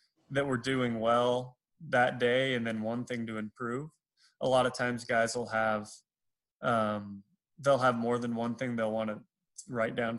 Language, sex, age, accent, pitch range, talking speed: English, male, 20-39, American, 115-135 Hz, 185 wpm